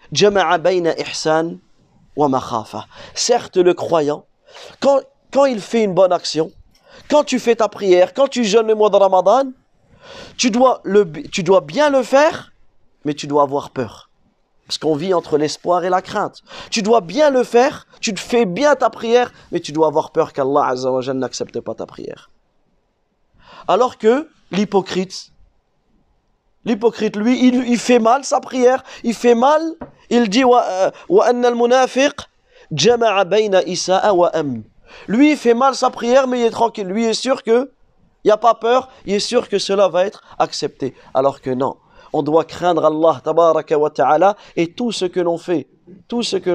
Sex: male